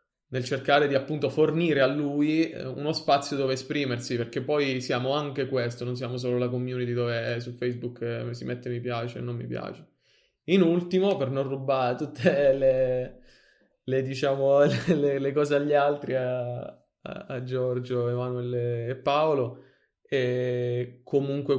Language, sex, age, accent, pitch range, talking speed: Italian, male, 20-39, native, 125-140 Hz, 155 wpm